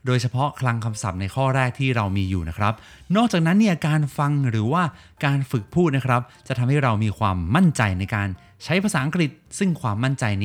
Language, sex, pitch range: Thai, male, 105-155 Hz